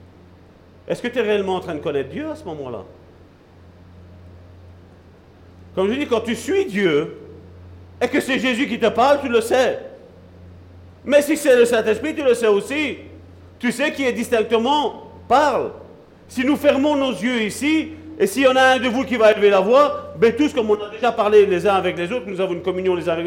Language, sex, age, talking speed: French, male, 50-69, 215 wpm